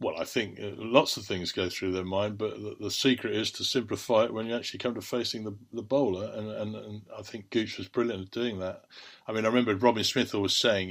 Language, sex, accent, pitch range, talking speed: English, male, British, 95-120 Hz, 255 wpm